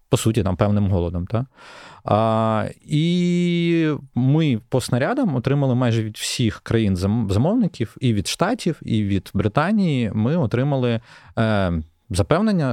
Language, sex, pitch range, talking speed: Ukrainian, male, 95-120 Hz, 120 wpm